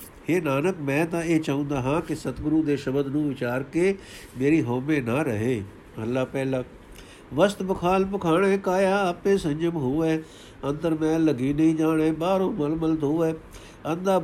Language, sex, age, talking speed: Punjabi, male, 60-79, 155 wpm